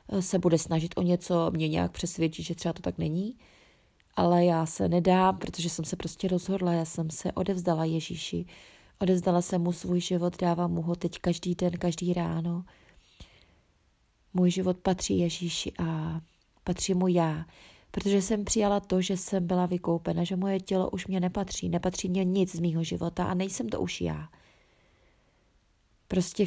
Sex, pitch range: female, 165-190 Hz